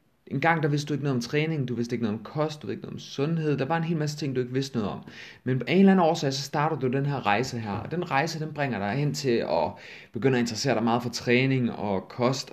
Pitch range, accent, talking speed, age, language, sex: 115-150 Hz, native, 300 wpm, 30-49, Danish, male